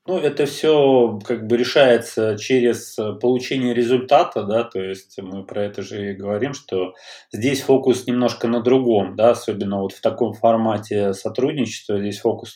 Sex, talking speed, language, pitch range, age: male, 160 wpm, Russian, 105-125 Hz, 20-39